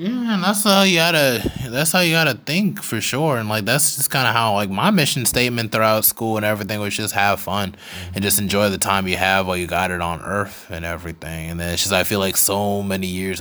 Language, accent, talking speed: English, American, 255 wpm